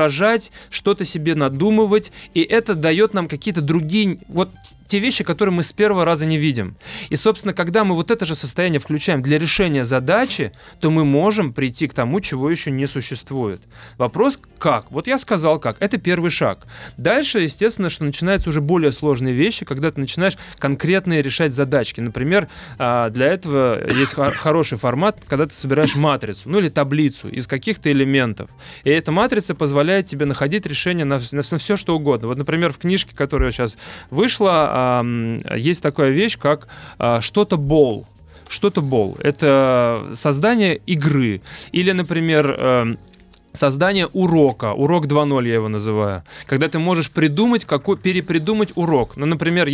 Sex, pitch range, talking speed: male, 135-185 Hz, 160 wpm